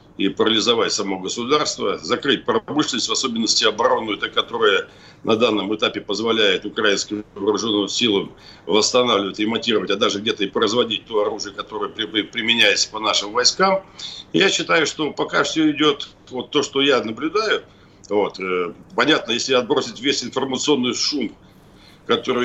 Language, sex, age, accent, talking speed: Russian, male, 60-79, native, 135 wpm